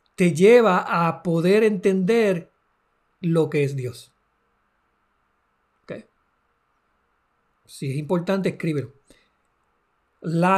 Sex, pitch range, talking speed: male, 155-195 Hz, 85 wpm